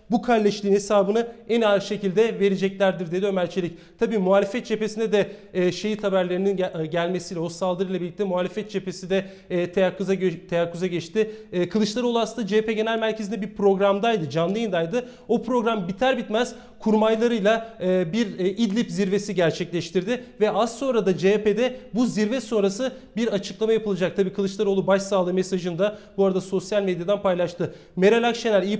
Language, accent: Turkish, native